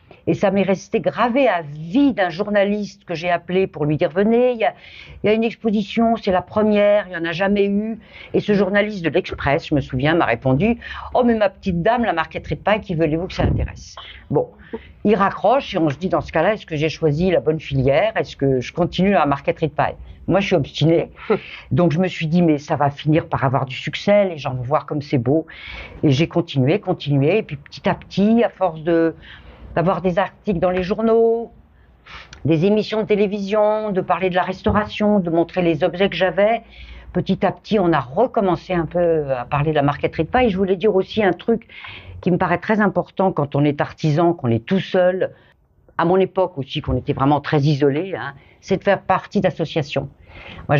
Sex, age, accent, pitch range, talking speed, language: female, 50-69, French, 155-200 Hz, 230 wpm, French